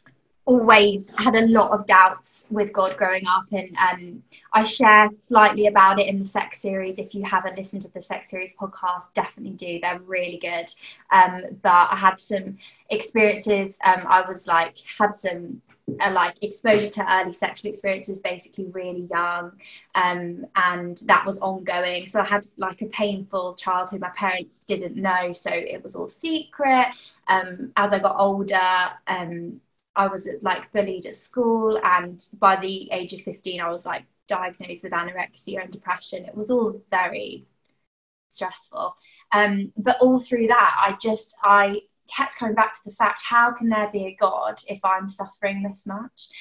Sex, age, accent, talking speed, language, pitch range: female, 20-39, British, 175 wpm, English, 185-215 Hz